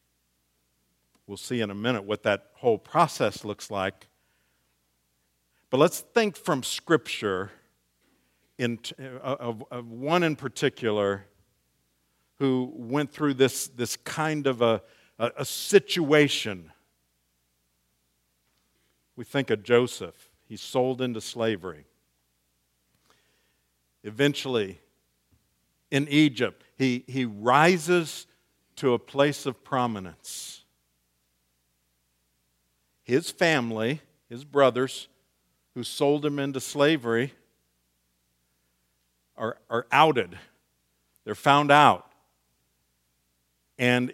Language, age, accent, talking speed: English, 50-69, American, 90 wpm